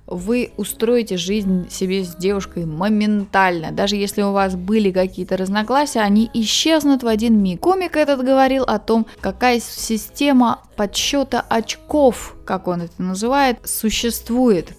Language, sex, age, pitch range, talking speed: Russian, female, 20-39, 200-260 Hz, 135 wpm